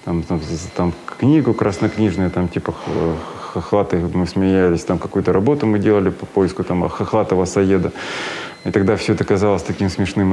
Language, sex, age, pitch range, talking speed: Russian, male, 20-39, 95-120 Hz, 155 wpm